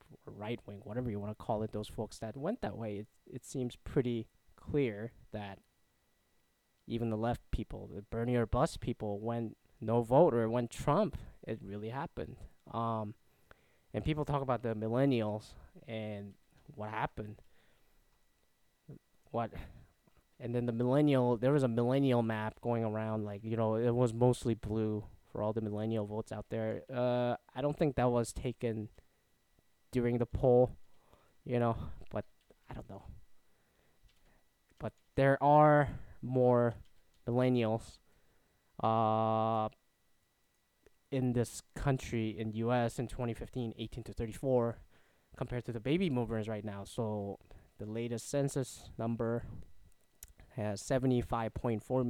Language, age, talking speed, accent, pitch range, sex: English, 20-39, 140 wpm, American, 105-125 Hz, male